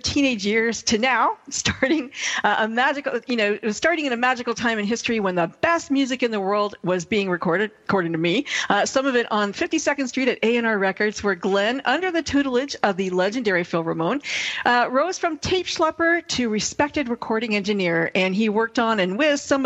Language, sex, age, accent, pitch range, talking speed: English, female, 50-69, American, 195-275 Hz, 195 wpm